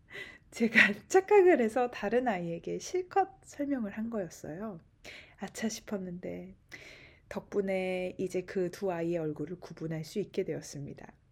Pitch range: 170-225 Hz